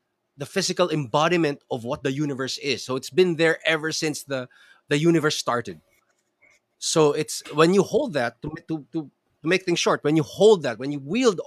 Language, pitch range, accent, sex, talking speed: English, 145-215 Hz, Filipino, male, 195 wpm